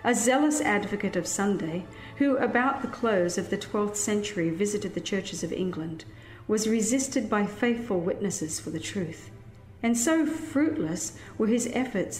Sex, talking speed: female, 155 wpm